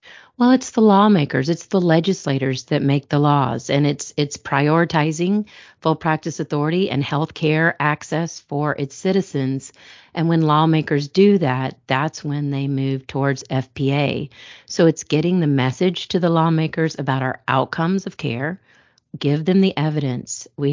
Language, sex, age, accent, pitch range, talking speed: English, female, 40-59, American, 135-160 Hz, 155 wpm